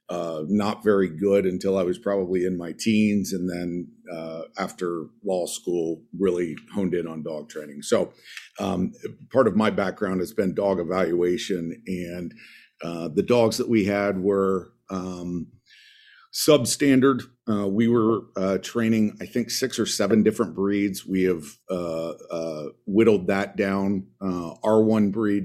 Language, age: English, 50-69